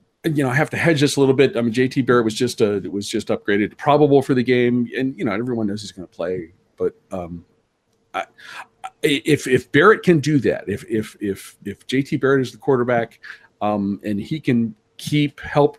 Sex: male